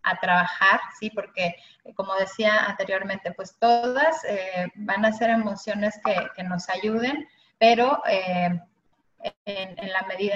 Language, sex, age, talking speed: Spanish, female, 30-49, 140 wpm